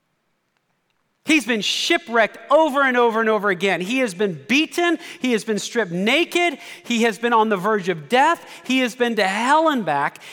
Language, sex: English, male